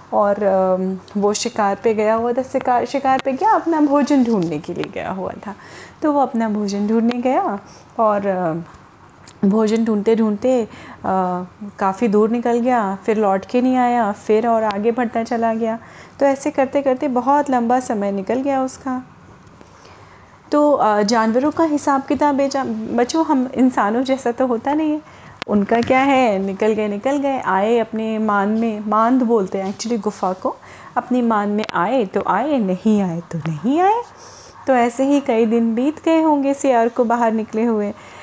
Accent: native